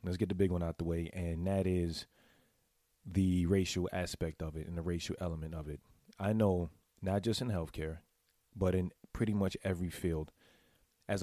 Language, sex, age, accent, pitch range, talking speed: English, male, 30-49, American, 85-100 Hz, 185 wpm